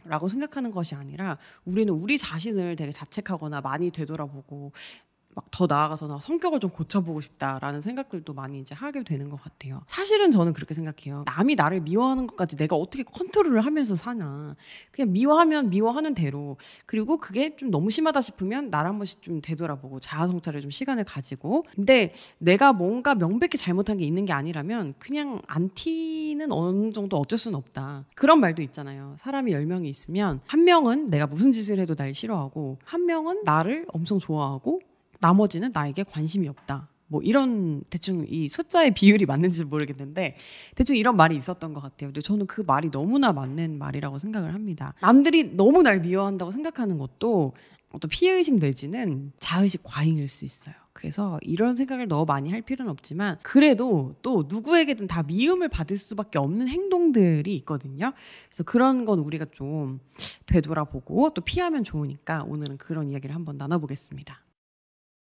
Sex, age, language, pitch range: female, 30-49, Korean, 150-240 Hz